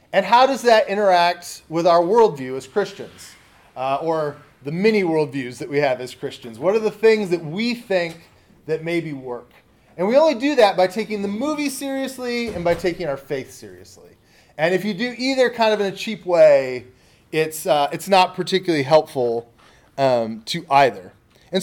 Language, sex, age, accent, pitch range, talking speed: English, male, 30-49, American, 155-220 Hz, 185 wpm